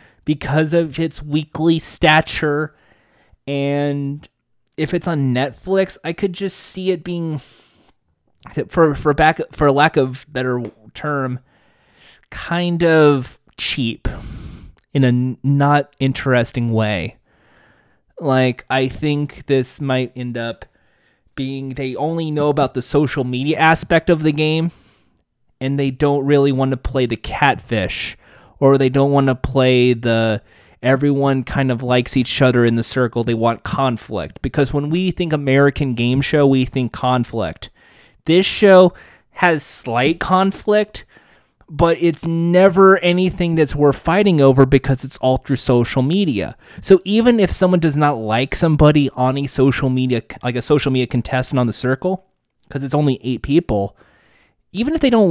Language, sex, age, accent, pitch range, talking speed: English, male, 20-39, American, 125-160 Hz, 150 wpm